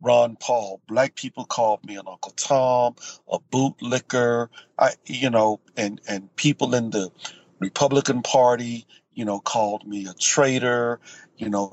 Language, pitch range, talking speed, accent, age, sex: English, 120-155 Hz, 145 wpm, American, 50-69, male